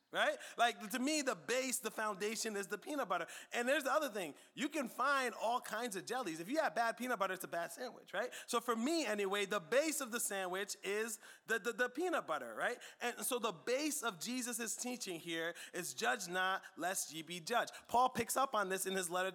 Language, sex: English, male